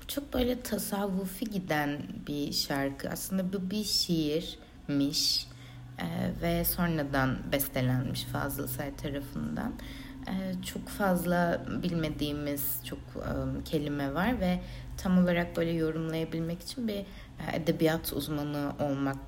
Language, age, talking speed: Turkish, 60-79, 110 wpm